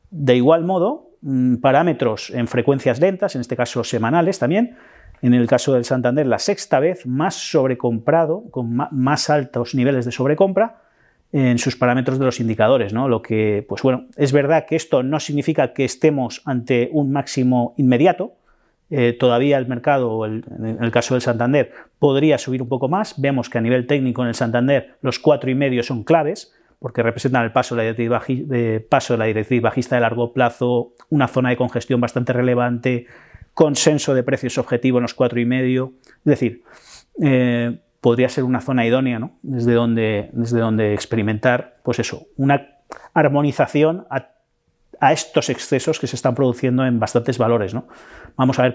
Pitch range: 120-145 Hz